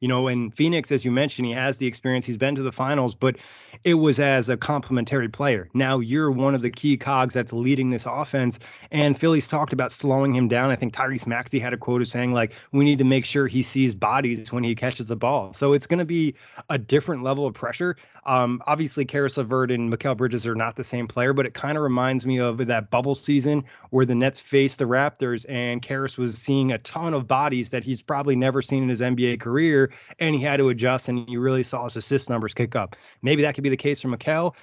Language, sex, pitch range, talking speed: English, male, 125-145 Hz, 245 wpm